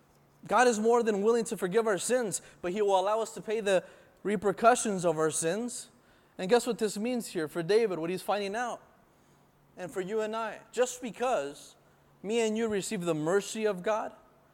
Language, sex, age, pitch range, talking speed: English, male, 20-39, 165-220 Hz, 200 wpm